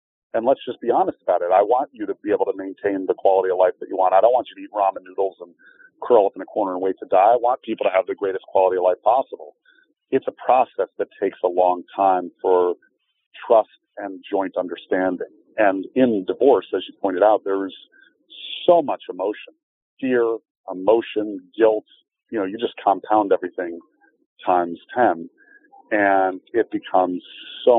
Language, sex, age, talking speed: English, male, 40-59, 195 wpm